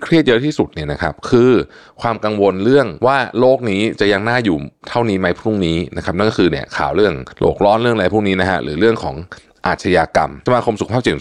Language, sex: Thai, male